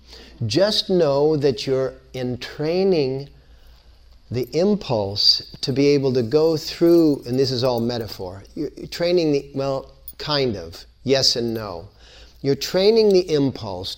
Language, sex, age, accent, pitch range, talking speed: English, male, 50-69, American, 110-175 Hz, 135 wpm